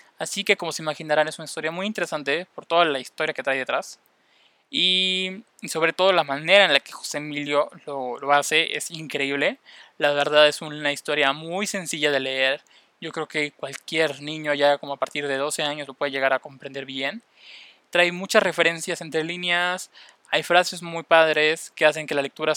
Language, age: Spanish, 20-39